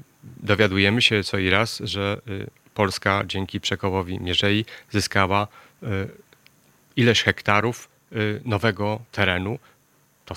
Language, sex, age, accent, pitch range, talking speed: Polish, male, 30-49, native, 105-130 Hz, 95 wpm